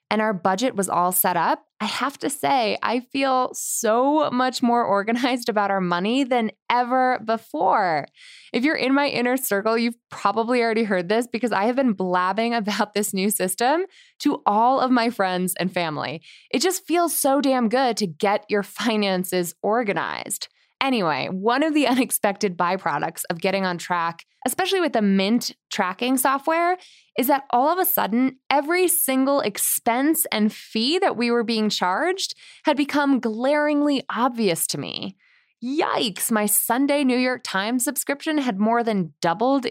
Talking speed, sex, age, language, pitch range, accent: 165 wpm, female, 20-39, English, 210-280 Hz, American